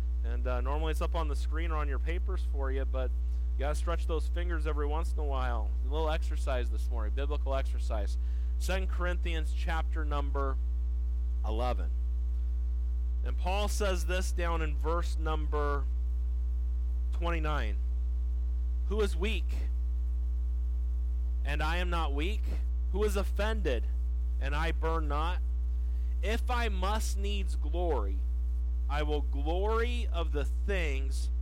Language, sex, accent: English, male, American